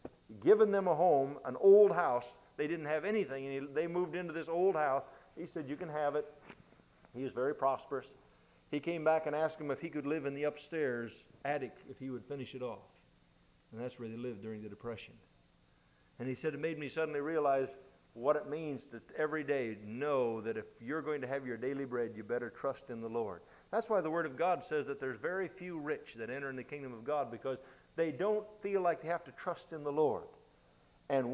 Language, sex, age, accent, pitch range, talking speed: English, male, 50-69, American, 135-180 Hz, 225 wpm